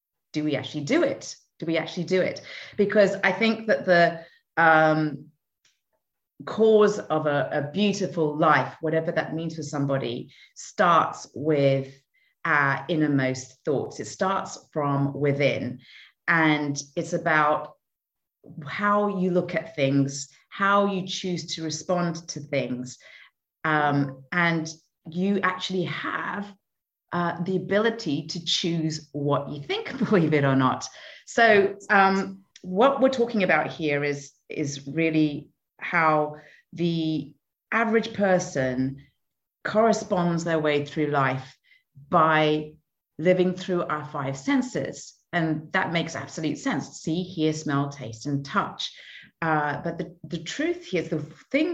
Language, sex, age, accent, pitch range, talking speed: English, female, 30-49, British, 145-185 Hz, 130 wpm